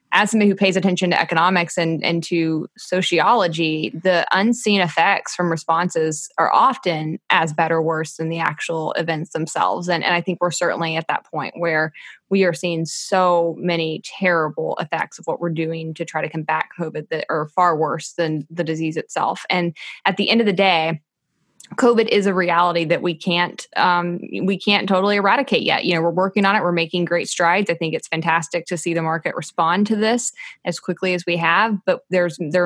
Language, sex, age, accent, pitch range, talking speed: English, female, 20-39, American, 165-190 Hz, 200 wpm